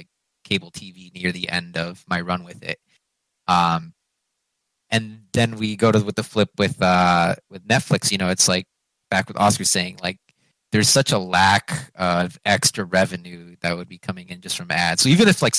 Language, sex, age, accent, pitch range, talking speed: English, male, 20-39, American, 90-120 Hz, 195 wpm